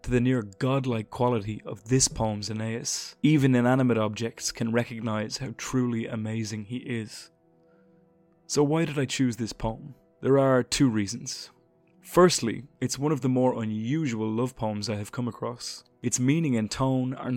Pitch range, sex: 110-130 Hz, male